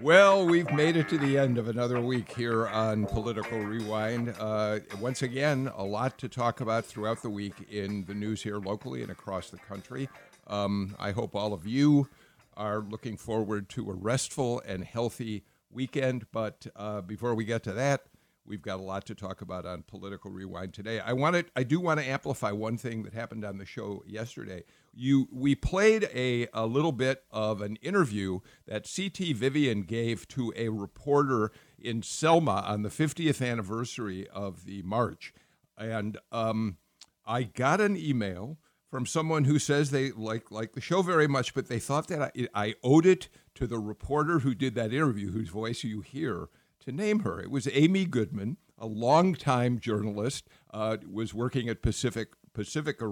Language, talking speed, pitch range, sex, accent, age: English, 180 wpm, 105-135 Hz, male, American, 50-69